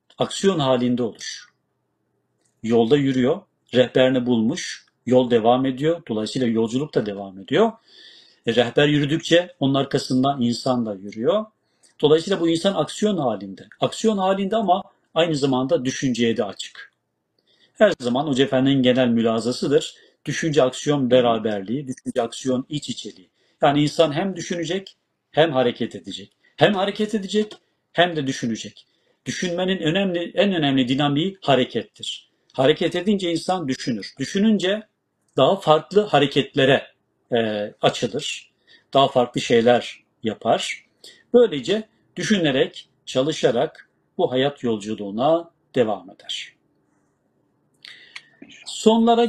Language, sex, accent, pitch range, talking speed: Turkish, male, native, 125-180 Hz, 110 wpm